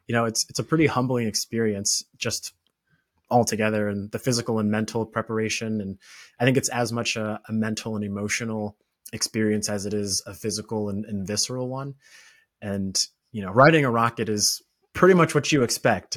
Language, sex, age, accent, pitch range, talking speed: English, male, 20-39, American, 105-120 Hz, 185 wpm